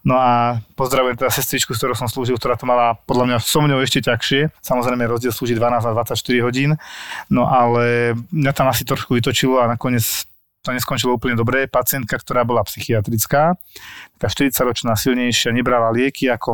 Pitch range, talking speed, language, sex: 115-130 Hz, 170 wpm, Slovak, male